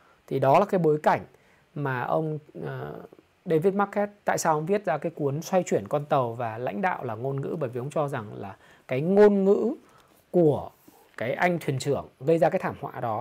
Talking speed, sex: 215 wpm, male